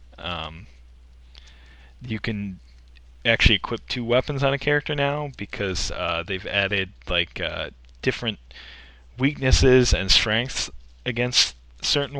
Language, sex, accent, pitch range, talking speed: English, male, American, 70-115 Hz, 115 wpm